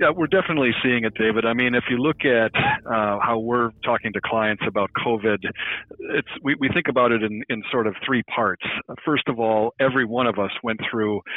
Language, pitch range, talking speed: English, 110-125 Hz, 215 wpm